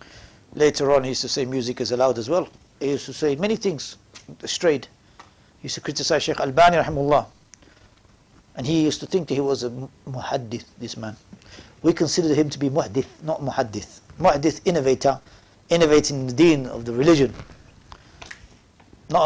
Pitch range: 130-190 Hz